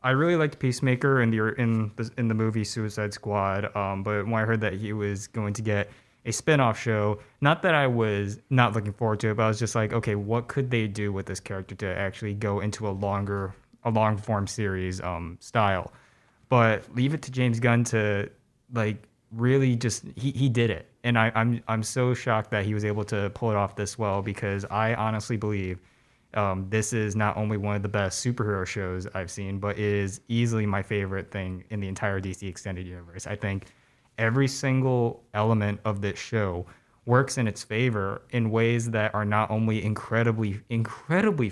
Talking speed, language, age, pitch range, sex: 205 wpm, English, 20-39, 100-120 Hz, male